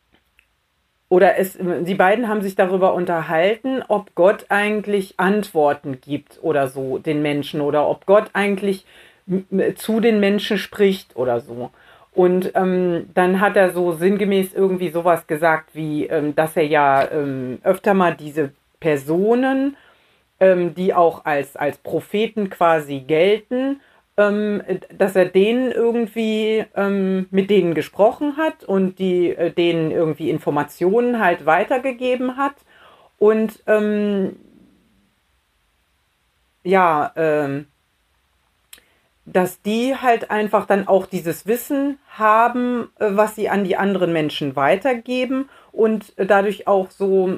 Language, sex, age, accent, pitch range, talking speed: German, female, 40-59, German, 155-210 Hz, 125 wpm